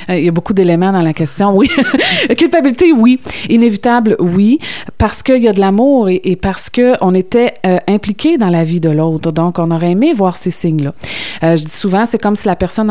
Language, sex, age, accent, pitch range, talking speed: French, female, 30-49, Canadian, 175-230 Hz, 215 wpm